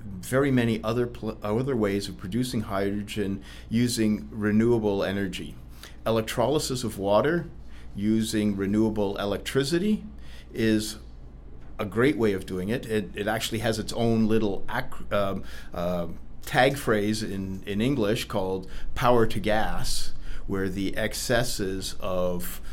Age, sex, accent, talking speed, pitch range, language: 50-69, male, American, 125 wpm, 90-110 Hz, English